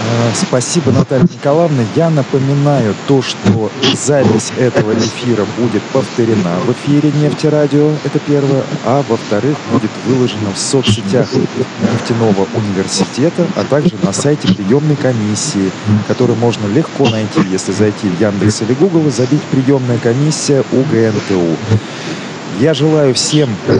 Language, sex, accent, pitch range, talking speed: Russian, male, native, 110-145 Hz, 125 wpm